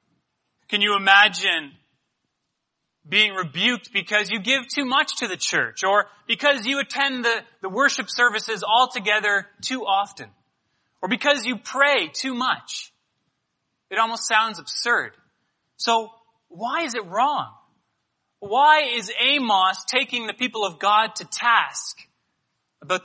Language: English